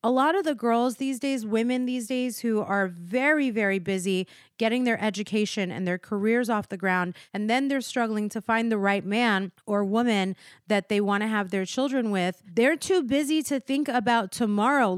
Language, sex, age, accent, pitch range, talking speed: English, female, 30-49, American, 195-250 Hz, 200 wpm